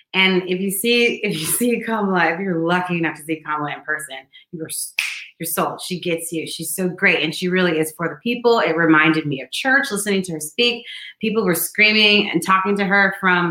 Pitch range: 160-190 Hz